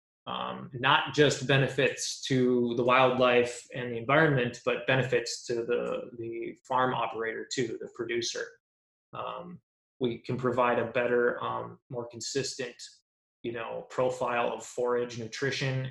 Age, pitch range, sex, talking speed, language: 20-39, 120-140 Hz, male, 130 wpm, English